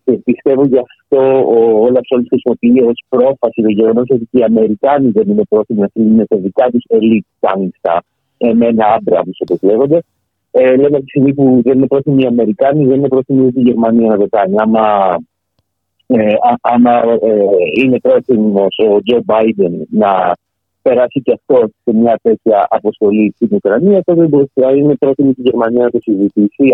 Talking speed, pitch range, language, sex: 175 wpm, 110-135 Hz, Greek, male